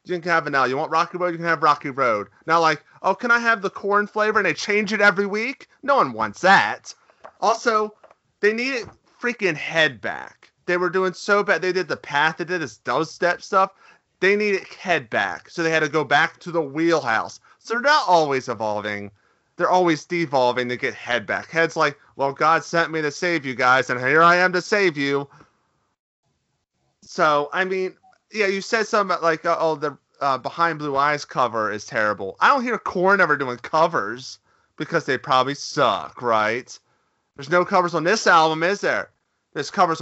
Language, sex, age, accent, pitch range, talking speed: English, male, 30-49, American, 145-200 Hz, 205 wpm